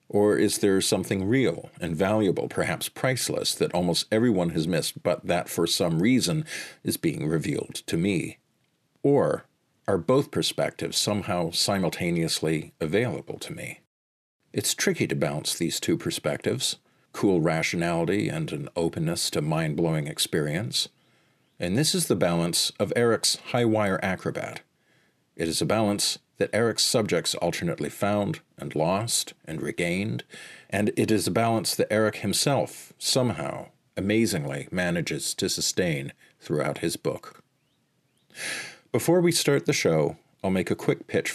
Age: 50-69